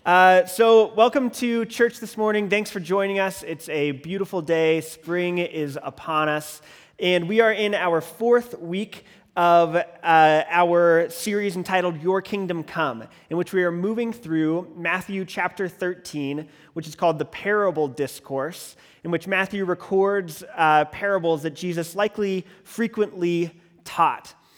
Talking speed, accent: 145 wpm, American